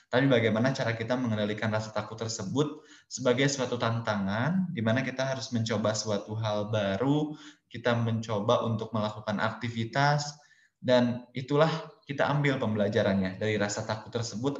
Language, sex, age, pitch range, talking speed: Indonesian, male, 20-39, 110-130 Hz, 135 wpm